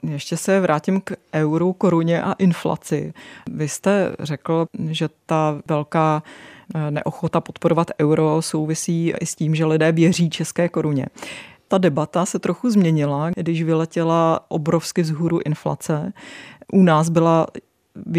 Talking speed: 130 wpm